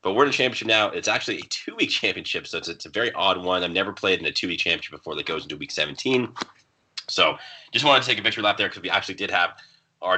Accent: American